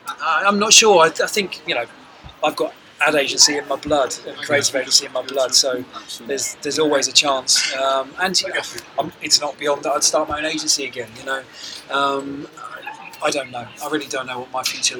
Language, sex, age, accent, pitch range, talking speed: English, male, 20-39, British, 130-155 Hz, 215 wpm